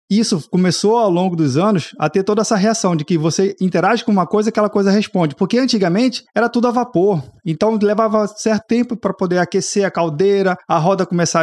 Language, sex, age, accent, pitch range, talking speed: Portuguese, male, 20-39, Brazilian, 150-195 Hz, 210 wpm